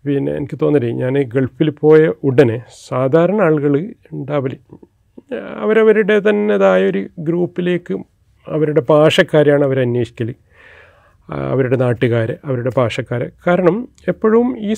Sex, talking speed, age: male, 95 wpm, 40-59